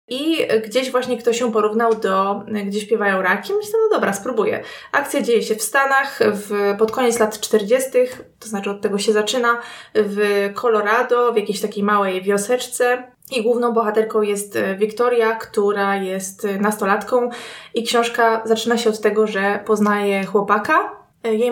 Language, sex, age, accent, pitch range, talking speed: Polish, female, 20-39, native, 215-265 Hz, 155 wpm